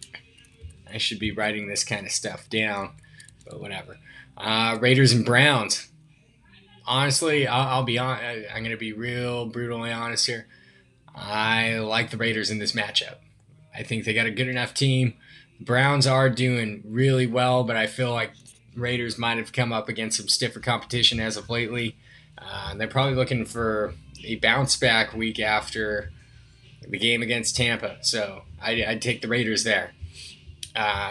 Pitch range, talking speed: 105-125 Hz, 165 wpm